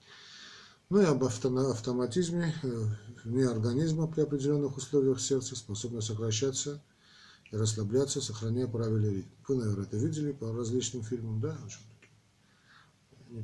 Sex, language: male, Russian